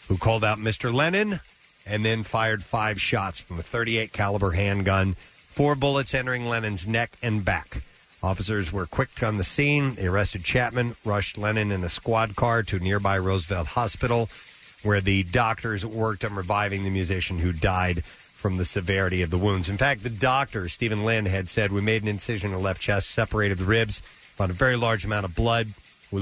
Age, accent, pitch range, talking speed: 40-59, American, 95-120 Hz, 190 wpm